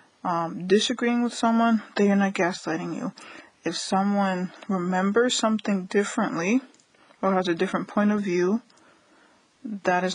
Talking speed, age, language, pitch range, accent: 135 wpm, 20-39, English, 185-220 Hz, American